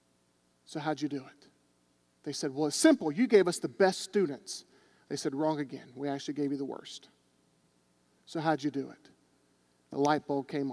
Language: English